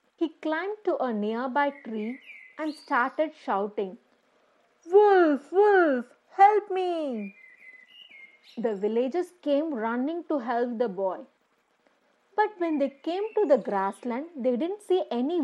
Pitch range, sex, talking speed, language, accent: 230-335 Hz, female, 125 wpm, English, Indian